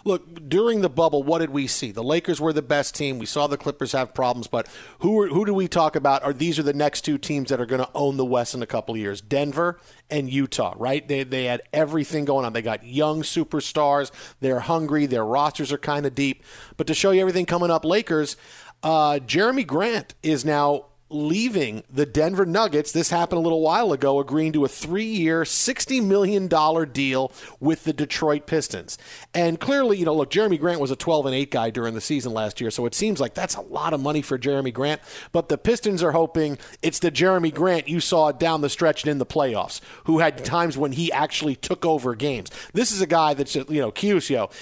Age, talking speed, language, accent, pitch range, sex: 40-59, 225 wpm, English, American, 140-165 Hz, male